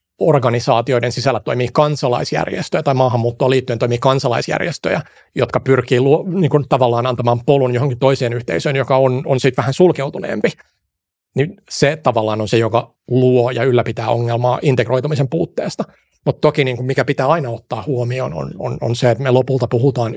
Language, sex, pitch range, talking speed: Finnish, male, 120-145 Hz, 160 wpm